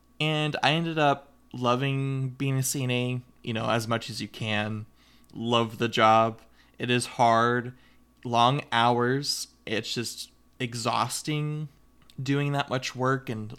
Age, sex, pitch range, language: 20-39, male, 115-140 Hz, English